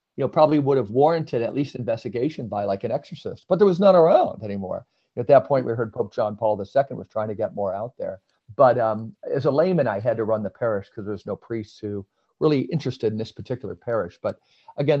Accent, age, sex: American, 50-69, male